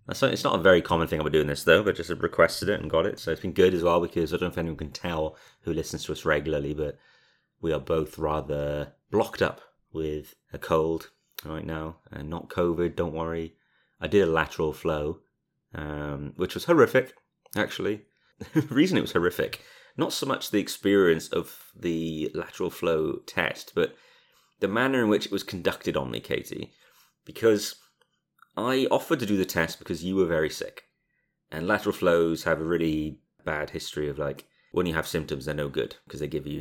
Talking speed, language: 200 wpm, English